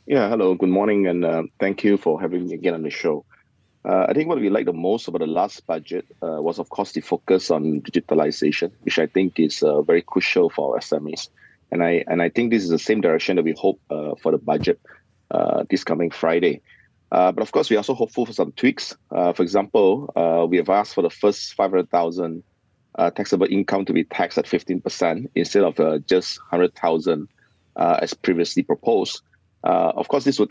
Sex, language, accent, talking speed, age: male, English, Malaysian, 215 wpm, 30-49